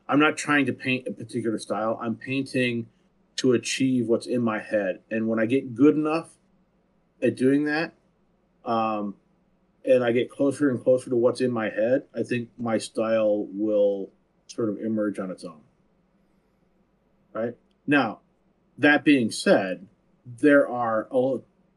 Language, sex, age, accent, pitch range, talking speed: English, male, 40-59, American, 115-185 Hz, 155 wpm